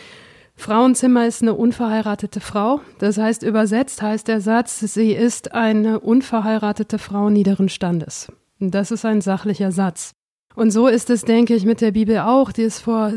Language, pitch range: German, 200-225 Hz